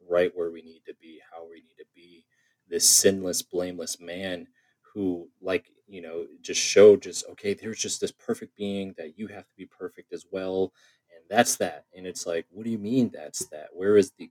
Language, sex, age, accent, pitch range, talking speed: English, male, 30-49, American, 90-120 Hz, 215 wpm